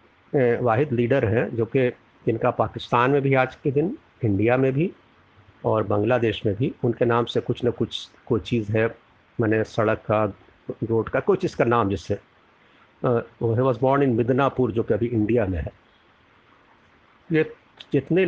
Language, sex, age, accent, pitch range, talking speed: Hindi, male, 50-69, native, 110-140 Hz, 165 wpm